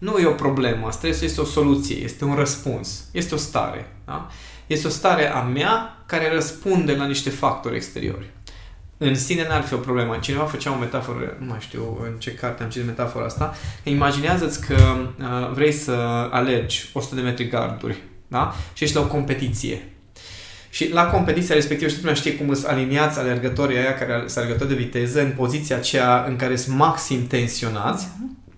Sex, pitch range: male, 120-150 Hz